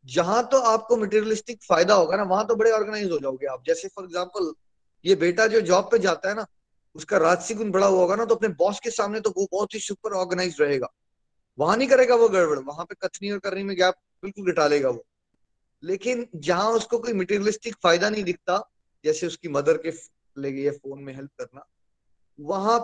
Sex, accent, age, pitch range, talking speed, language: male, native, 20-39, 170-220 Hz, 200 wpm, Hindi